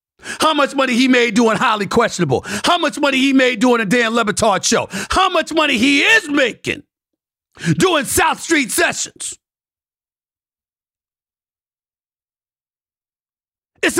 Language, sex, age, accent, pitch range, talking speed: English, male, 50-69, American, 275-335 Hz, 125 wpm